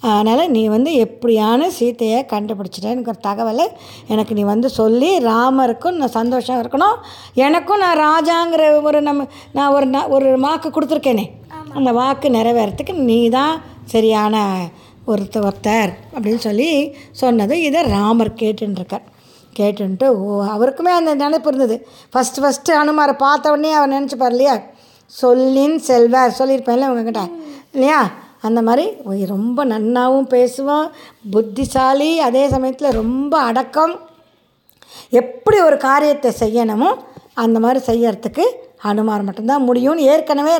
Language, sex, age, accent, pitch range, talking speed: Tamil, female, 20-39, native, 220-280 Hz, 120 wpm